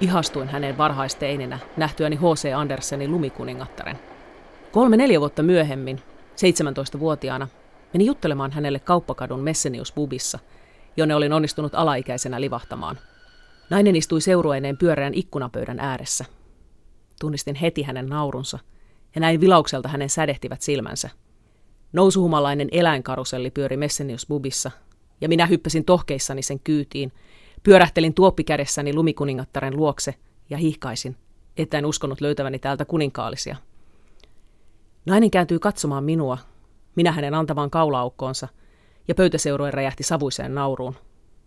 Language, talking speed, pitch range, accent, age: Finnish, 105 wpm, 130-160 Hz, native, 30-49